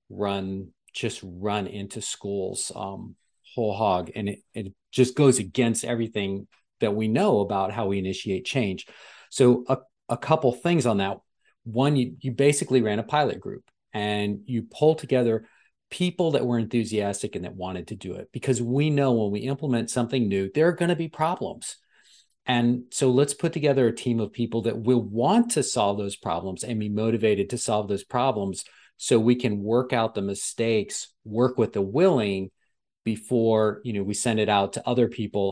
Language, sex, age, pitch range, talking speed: English, male, 40-59, 105-130 Hz, 185 wpm